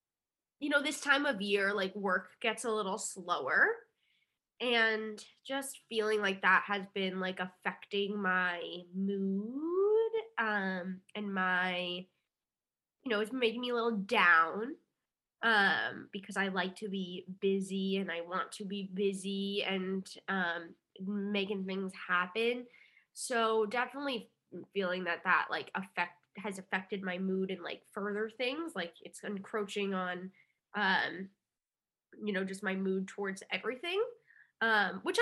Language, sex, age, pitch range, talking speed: English, female, 10-29, 185-230 Hz, 140 wpm